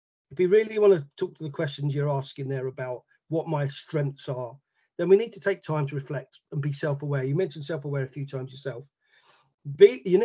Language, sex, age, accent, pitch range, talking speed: English, male, 40-59, British, 135-165 Hz, 215 wpm